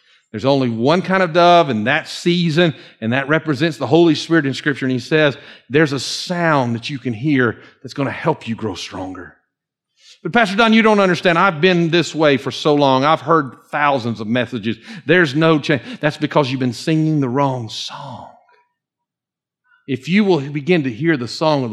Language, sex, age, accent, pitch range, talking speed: English, male, 50-69, American, 140-195 Hz, 200 wpm